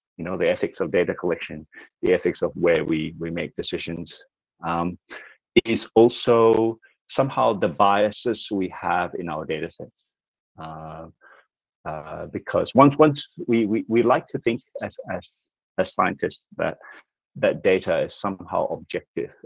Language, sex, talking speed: English, male, 150 wpm